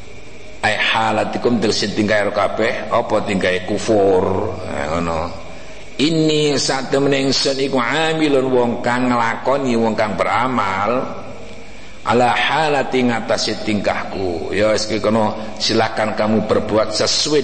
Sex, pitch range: male, 105-140 Hz